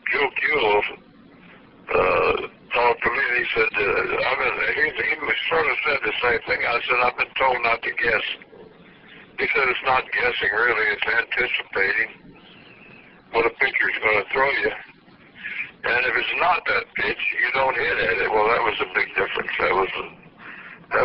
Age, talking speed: 60-79, 180 wpm